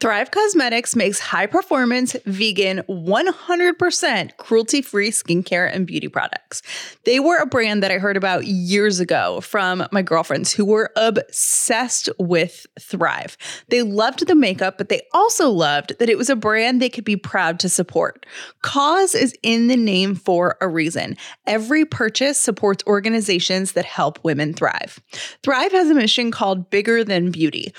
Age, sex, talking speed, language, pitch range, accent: 20-39, female, 160 wpm, English, 190-260 Hz, American